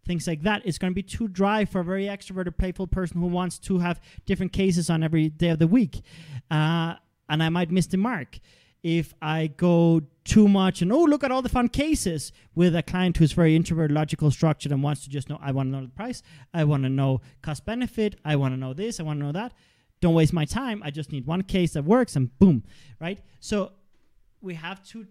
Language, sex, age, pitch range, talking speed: English, male, 30-49, 140-185 Hz, 235 wpm